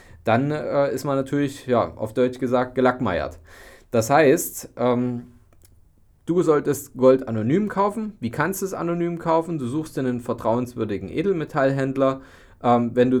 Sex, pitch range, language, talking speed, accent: male, 115-145 Hz, German, 150 wpm, German